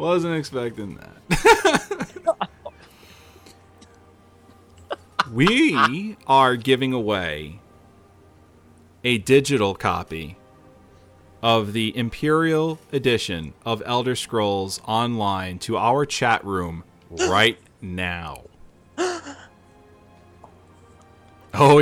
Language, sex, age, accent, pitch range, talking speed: English, male, 30-49, American, 95-130 Hz, 70 wpm